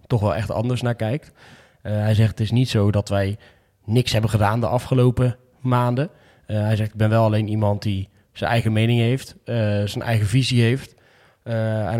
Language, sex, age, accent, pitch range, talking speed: Dutch, male, 20-39, Dutch, 110-130 Hz, 205 wpm